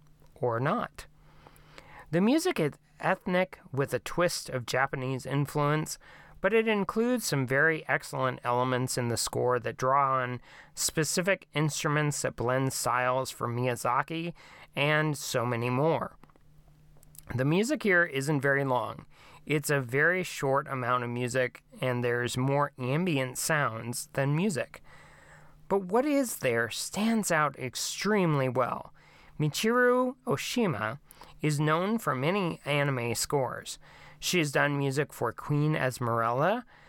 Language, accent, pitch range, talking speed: English, American, 130-170 Hz, 130 wpm